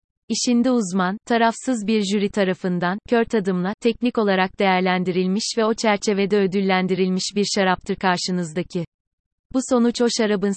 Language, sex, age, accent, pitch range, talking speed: Turkish, female, 30-49, native, 185-220 Hz, 125 wpm